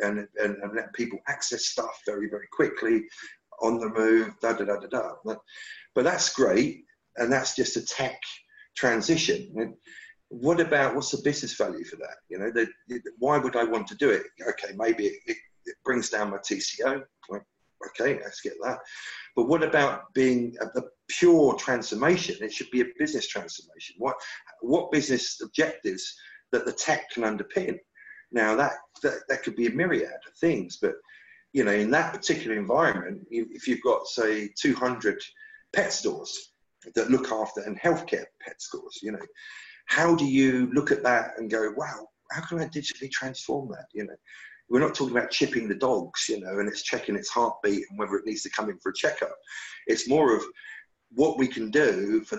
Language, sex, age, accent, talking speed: English, male, 50-69, British, 190 wpm